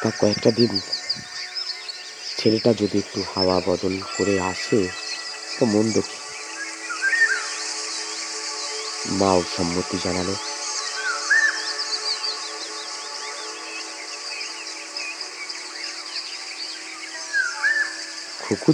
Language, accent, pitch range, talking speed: Bengali, native, 95-115 Hz, 40 wpm